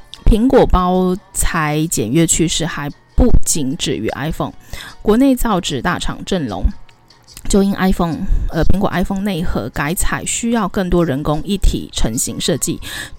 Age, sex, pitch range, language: 20-39, female, 155-195 Hz, Chinese